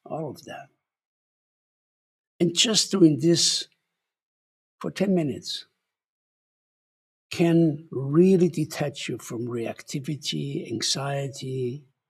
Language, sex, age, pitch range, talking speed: English, male, 60-79, 130-170 Hz, 85 wpm